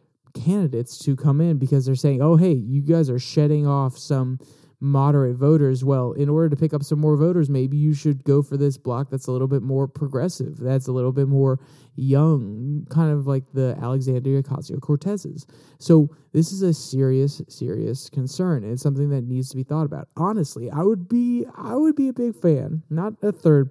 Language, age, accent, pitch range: English, 20-39, American, 140-160 Hz